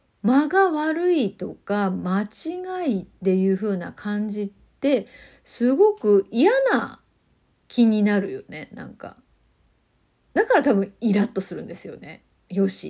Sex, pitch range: female, 195-275 Hz